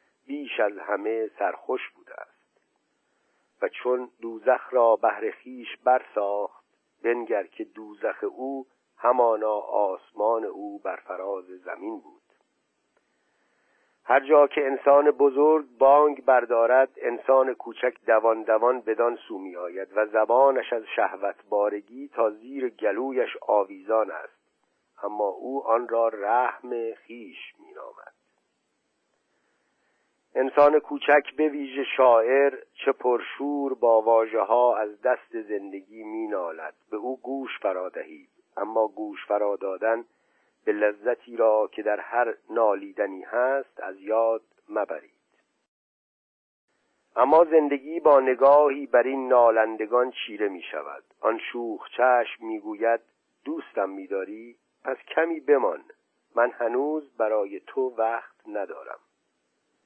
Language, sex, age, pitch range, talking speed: Persian, male, 50-69, 110-145 Hz, 110 wpm